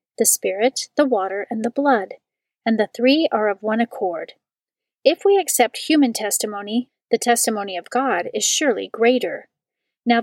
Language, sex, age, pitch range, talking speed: English, female, 40-59, 210-265 Hz, 160 wpm